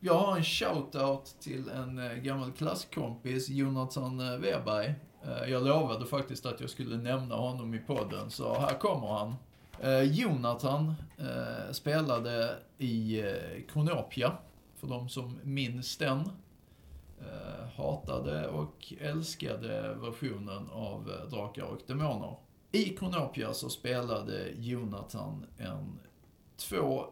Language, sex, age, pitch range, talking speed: Swedish, male, 30-49, 115-145 Hz, 105 wpm